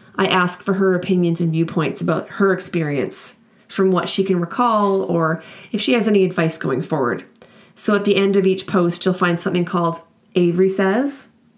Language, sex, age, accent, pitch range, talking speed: English, female, 30-49, American, 170-205 Hz, 185 wpm